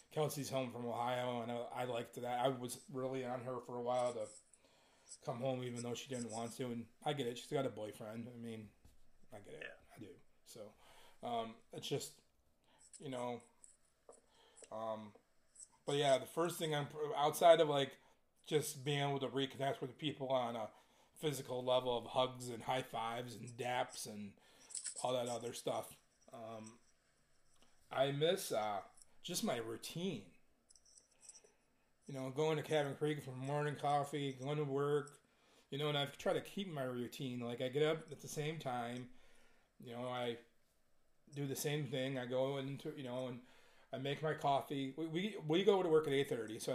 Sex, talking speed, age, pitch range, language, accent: male, 185 wpm, 30-49, 120-145 Hz, English, American